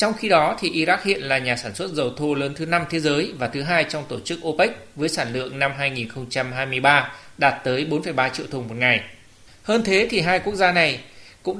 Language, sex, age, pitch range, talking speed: Vietnamese, male, 20-39, 140-185 Hz, 230 wpm